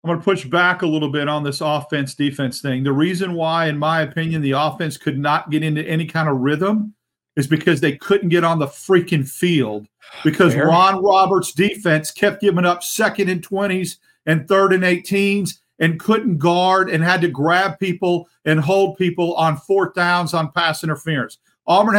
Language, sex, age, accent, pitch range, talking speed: English, male, 40-59, American, 155-195 Hz, 190 wpm